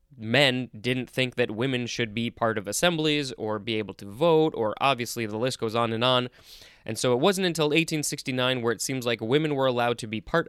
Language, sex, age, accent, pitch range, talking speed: English, male, 20-39, American, 115-150 Hz, 225 wpm